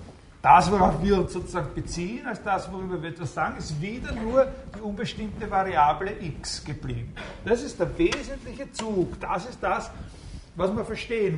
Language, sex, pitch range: German, male, 140-195 Hz